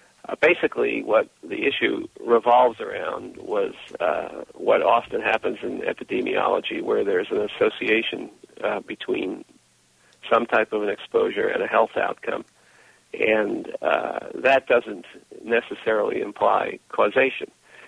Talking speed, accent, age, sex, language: 120 wpm, American, 50-69, male, English